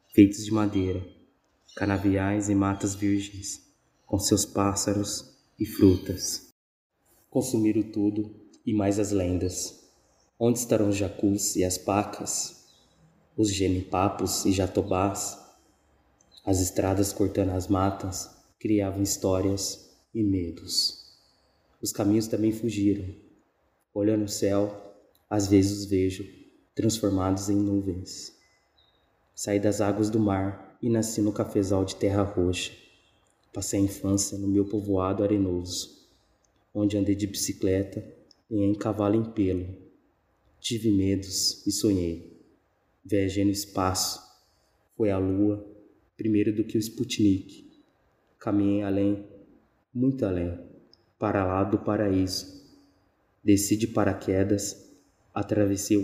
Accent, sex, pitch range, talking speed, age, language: Brazilian, male, 95-105 Hz, 115 wpm, 20-39, Portuguese